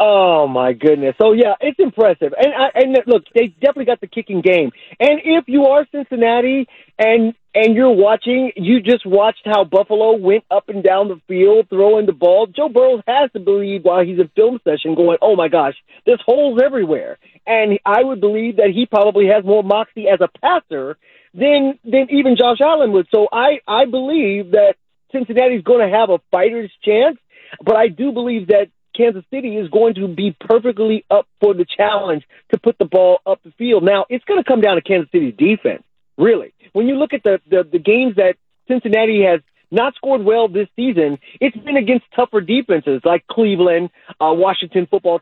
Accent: American